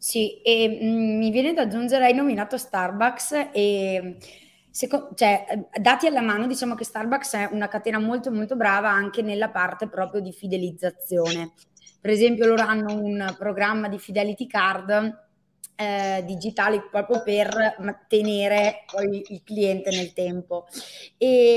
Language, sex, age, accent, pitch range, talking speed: Italian, female, 20-39, native, 200-245 Hz, 140 wpm